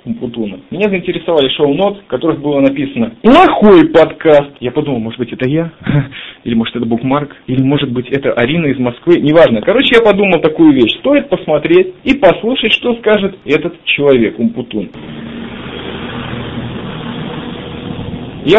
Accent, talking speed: native, 135 wpm